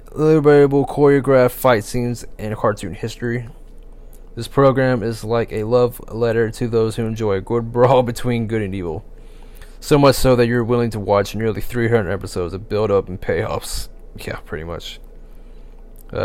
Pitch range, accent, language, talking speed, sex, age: 105-125 Hz, American, English, 165 wpm, male, 20-39